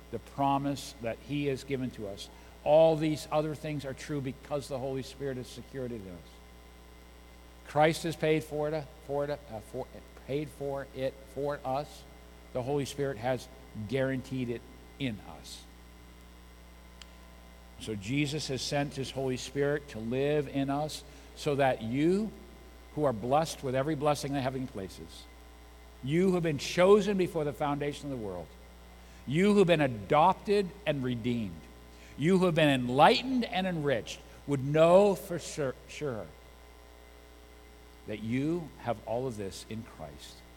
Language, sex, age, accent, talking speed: English, male, 60-79, American, 160 wpm